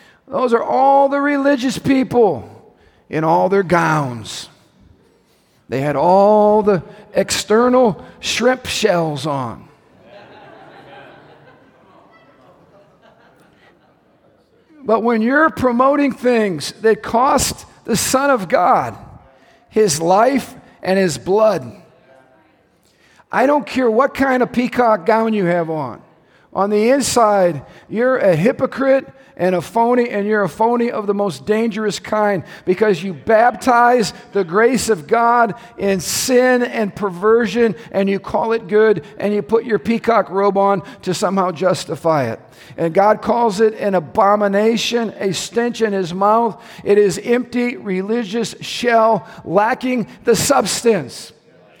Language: English